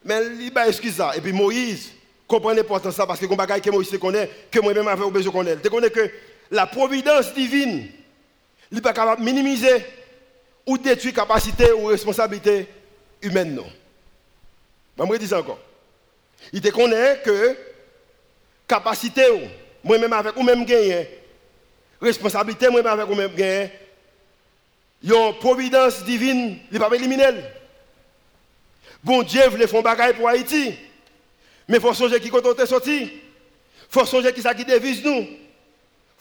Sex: male